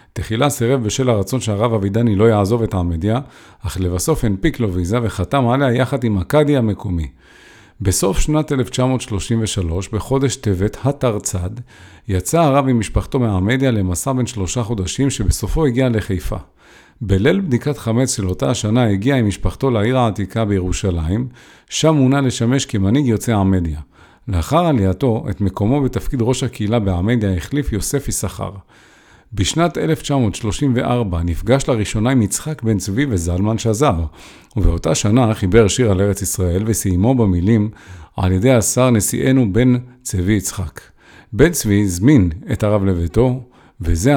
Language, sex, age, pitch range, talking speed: English, male, 40-59, 95-130 Hz, 135 wpm